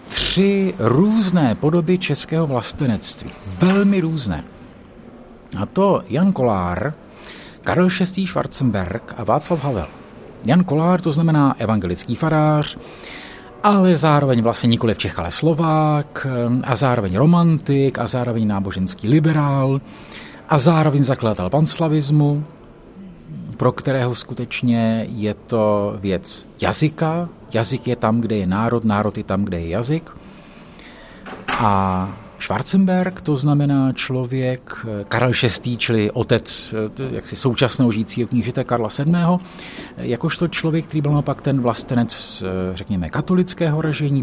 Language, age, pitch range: Czech, 50-69, 115-160 Hz